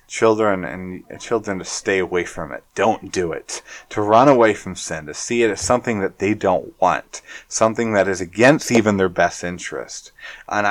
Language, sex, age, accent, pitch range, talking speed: English, male, 30-49, American, 90-115 Hz, 190 wpm